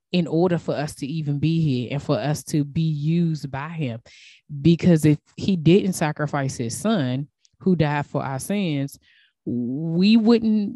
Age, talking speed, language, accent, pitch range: 20-39, 165 wpm, English, American, 150-190 Hz